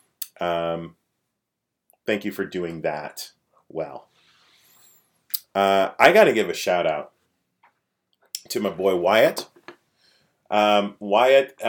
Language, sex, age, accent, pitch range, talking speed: English, male, 30-49, American, 90-110 Hz, 105 wpm